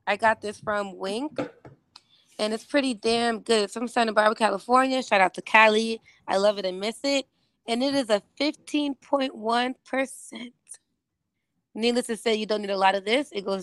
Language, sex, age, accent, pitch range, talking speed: English, female, 20-39, American, 200-260 Hz, 185 wpm